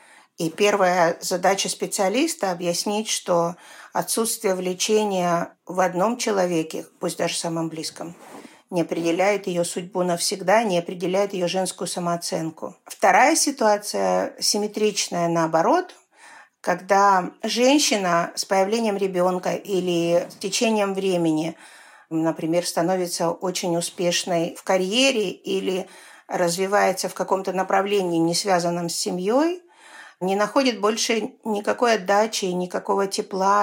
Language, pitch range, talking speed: Russian, 175-215 Hz, 110 wpm